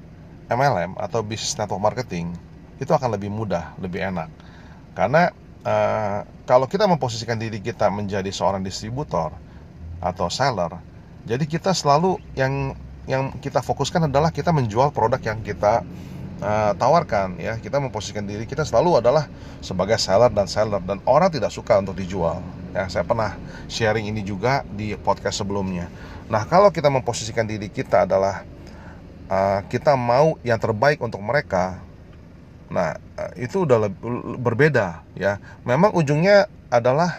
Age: 30-49